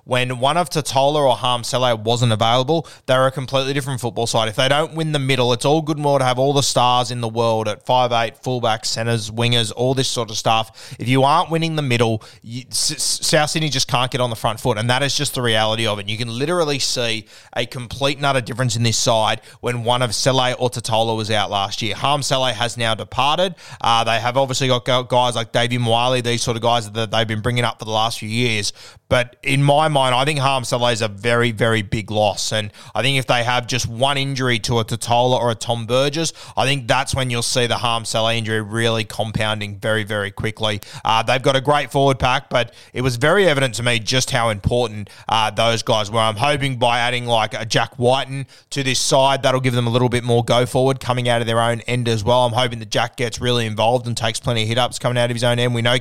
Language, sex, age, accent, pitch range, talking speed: English, male, 20-39, Australian, 115-130 Hz, 245 wpm